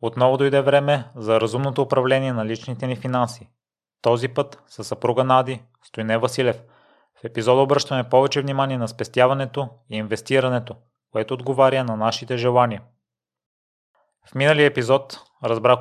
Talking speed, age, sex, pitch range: 135 wpm, 30-49, male, 120-135 Hz